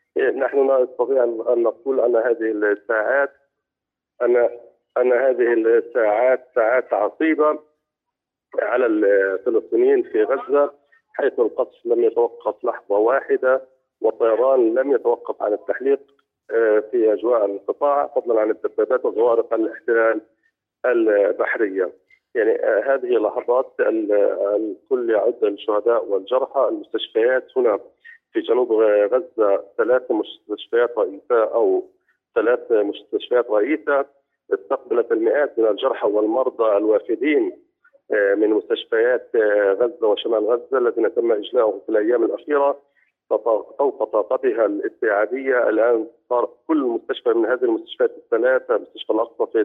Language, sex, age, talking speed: Arabic, male, 40-59, 105 wpm